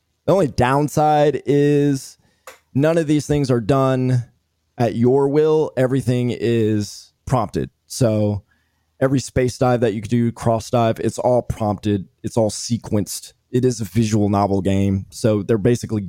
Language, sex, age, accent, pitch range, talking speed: English, male, 20-39, American, 100-130 Hz, 155 wpm